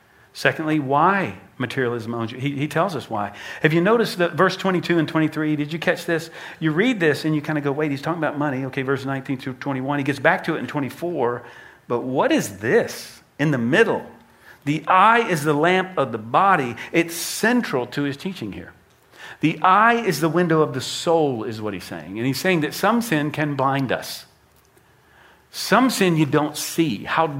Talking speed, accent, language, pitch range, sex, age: 210 wpm, American, English, 130-165 Hz, male, 50-69